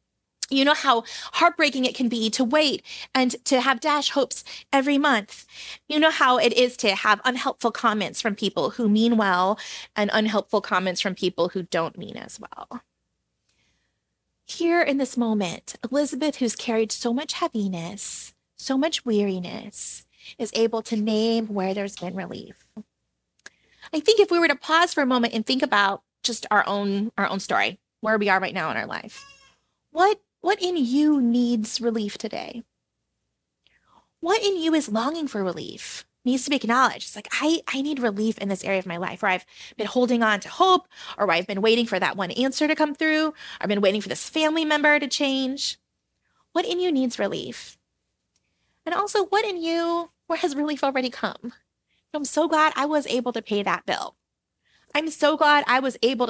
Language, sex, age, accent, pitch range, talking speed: English, female, 30-49, American, 205-295 Hz, 185 wpm